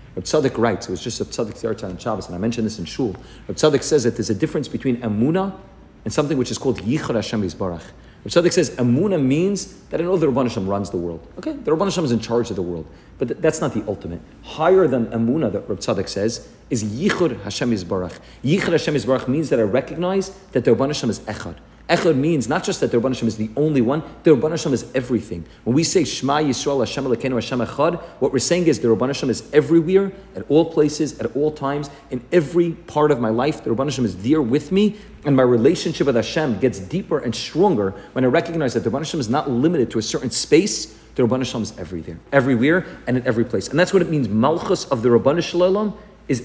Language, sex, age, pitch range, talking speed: English, male, 40-59, 110-160 Hz, 225 wpm